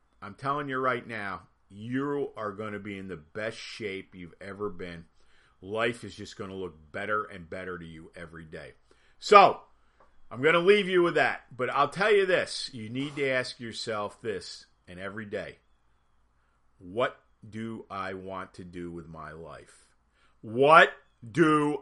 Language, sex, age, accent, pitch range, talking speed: English, male, 40-59, American, 105-150 Hz, 175 wpm